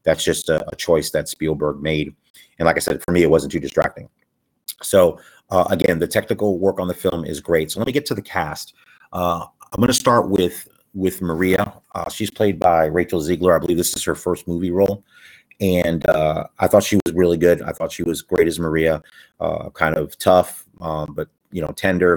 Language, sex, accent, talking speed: English, male, American, 215 wpm